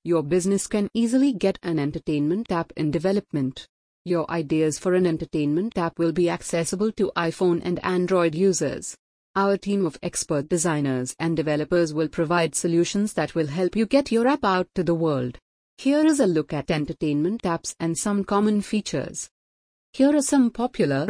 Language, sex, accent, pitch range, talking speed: English, female, Indian, 160-195 Hz, 170 wpm